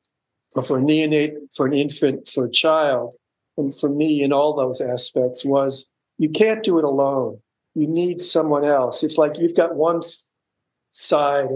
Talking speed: 170 wpm